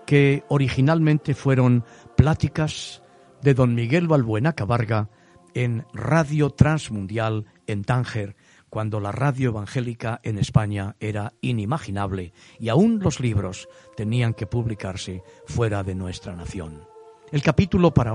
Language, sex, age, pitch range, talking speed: Spanish, male, 50-69, 110-165 Hz, 120 wpm